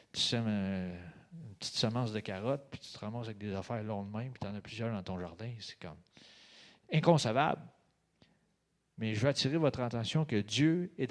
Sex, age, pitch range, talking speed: male, 40-59, 110-150 Hz, 195 wpm